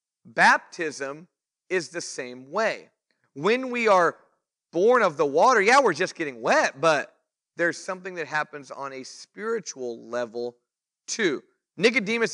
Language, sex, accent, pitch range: English, male, American, 145-200 Hz